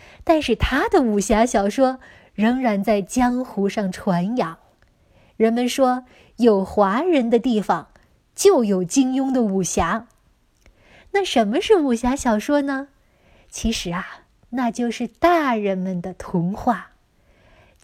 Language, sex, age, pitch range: Chinese, female, 20-39, 215-270 Hz